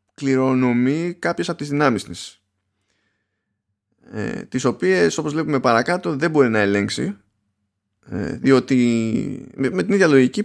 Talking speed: 130 wpm